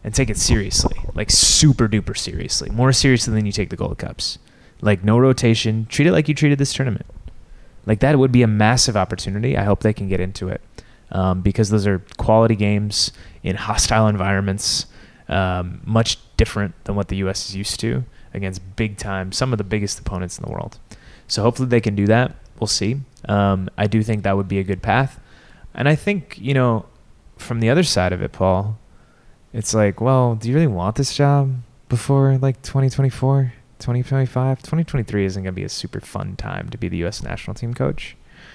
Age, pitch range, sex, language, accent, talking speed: 20-39, 100-130 Hz, male, English, American, 200 wpm